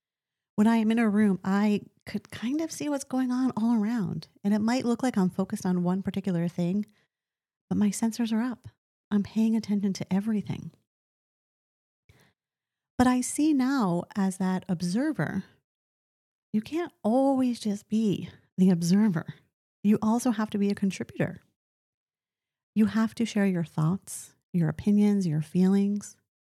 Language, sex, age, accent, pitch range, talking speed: English, female, 30-49, American, 180-225 Hz, 155 wpm